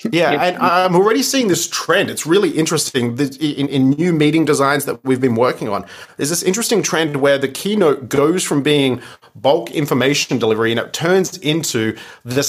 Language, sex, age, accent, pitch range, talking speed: English, male, 30-49, Australian, 125-155 Hz, 185 wpm